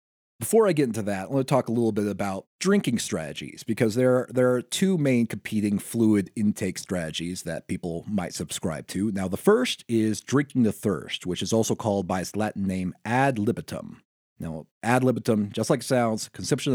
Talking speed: 195 wpm